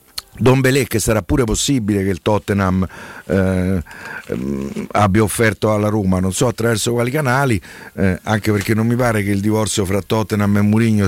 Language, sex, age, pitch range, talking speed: Italian, male, 50-69, 95-125 Hz, 175 wpm